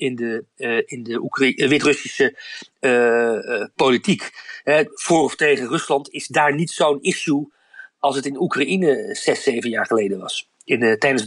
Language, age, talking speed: Dutch, 40-59, 150 wpm